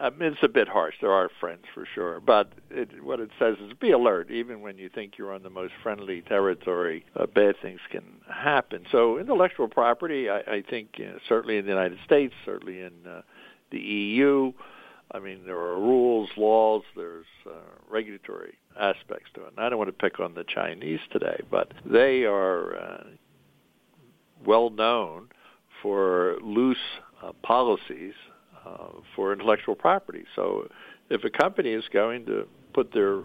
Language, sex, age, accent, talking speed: English, male, 60-79, American, 165 wpm